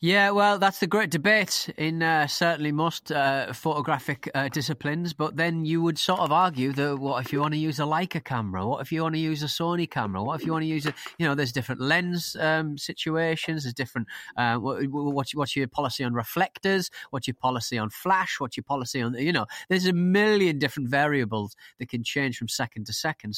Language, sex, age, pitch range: English, male, 30-49, 125-170 Hz